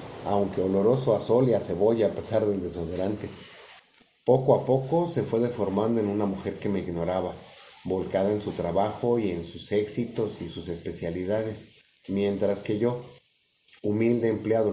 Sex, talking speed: male, 160 wpm